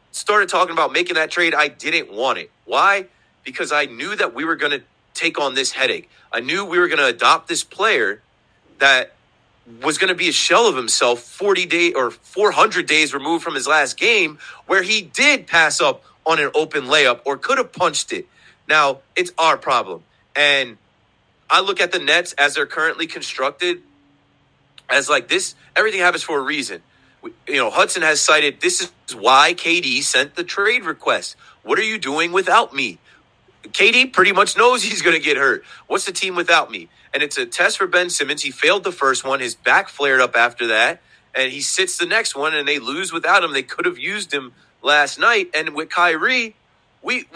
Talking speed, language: 205 wpm, English